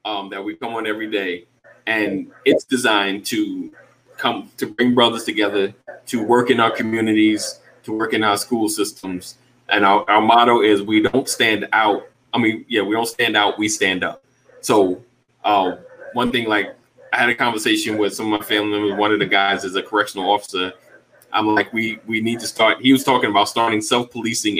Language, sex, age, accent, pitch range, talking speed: English, male, 20-39, American, 105-130 Hz, 200 wpm